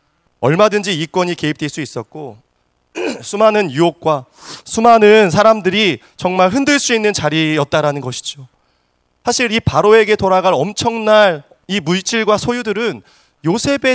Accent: native